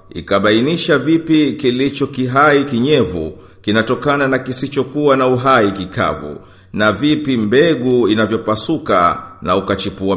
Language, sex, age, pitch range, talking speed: Swahili, male, 50-69, 115-150 Hz, 100 wpm